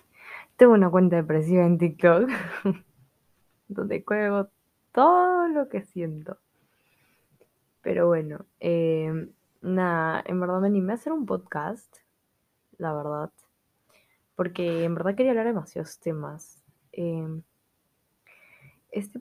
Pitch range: 165-210 Hz